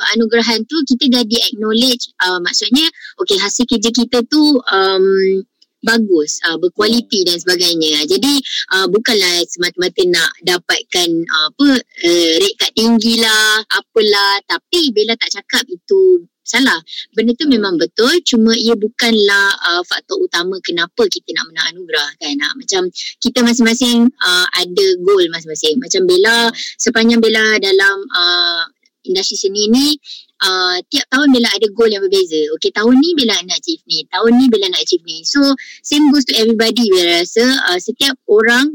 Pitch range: 195-300 Hz